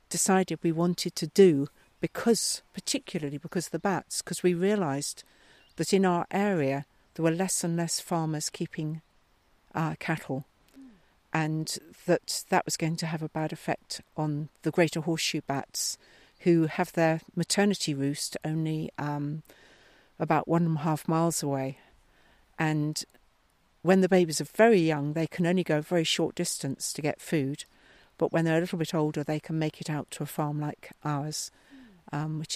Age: 60-79